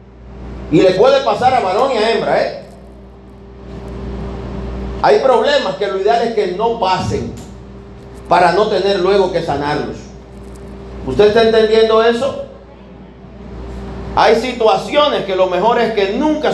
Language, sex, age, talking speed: Spanish, male, 40-59, 130 wpm